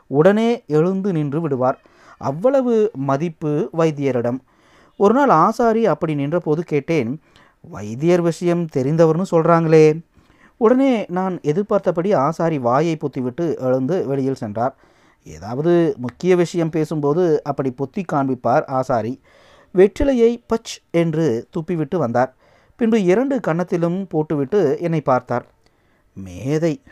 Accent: native